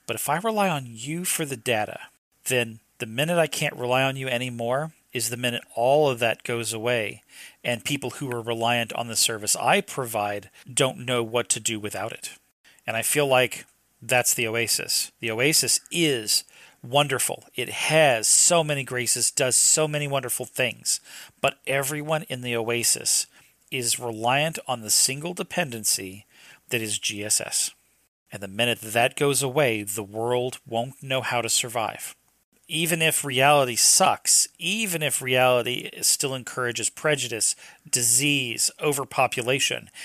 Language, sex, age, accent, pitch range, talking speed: English, male, 40-59, American, 115-145 Hz, 155 wpm